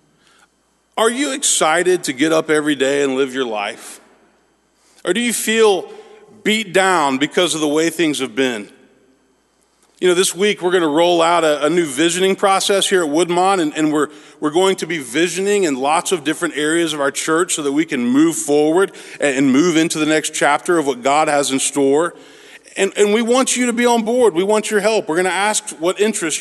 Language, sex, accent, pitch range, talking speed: English, male, American, 155-215 Hz, 215 wpm